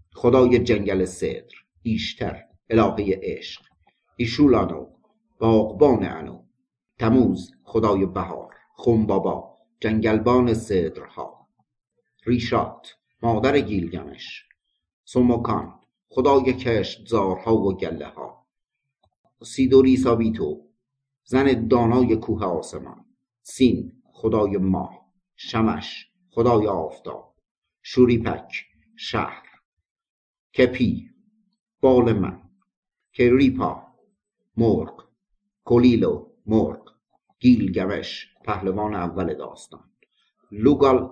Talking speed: 70 wpm